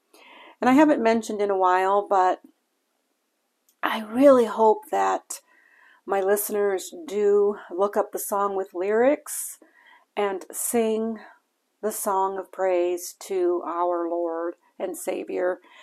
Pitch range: 180-260 Hz